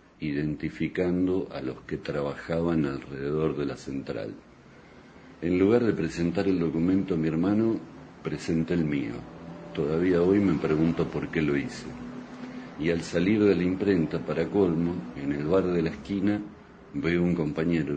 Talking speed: 155 wpm